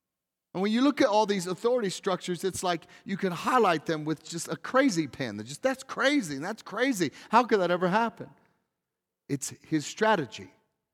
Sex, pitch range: male, 150-205 Hz